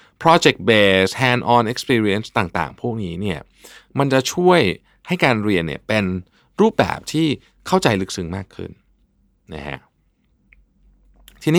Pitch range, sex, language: 85-130 Hz, male, Thai